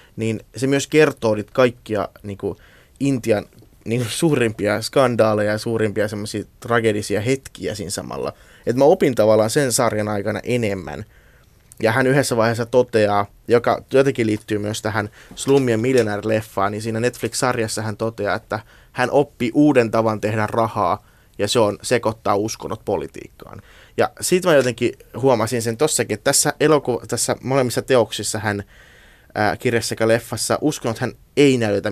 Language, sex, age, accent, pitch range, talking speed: Finnish, male, 20-39, native, 105-125 Hz, 145 wpm